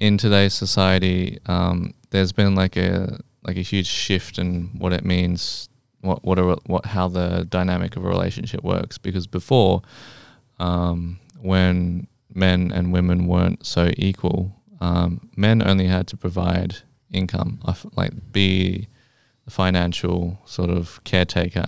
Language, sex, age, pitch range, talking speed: English, male, 20-39, 90-100 Hz, 140 wpm